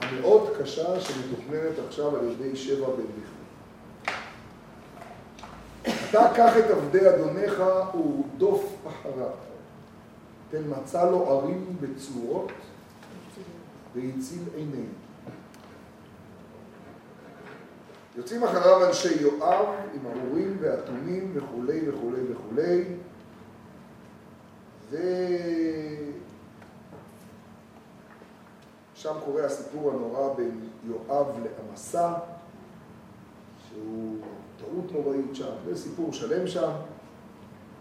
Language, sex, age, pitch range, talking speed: Hebrew, male, 40-59, 135-185 Hz, 75 wpm